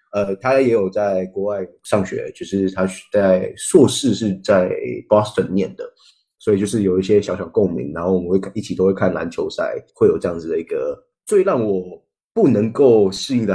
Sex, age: male, 20-39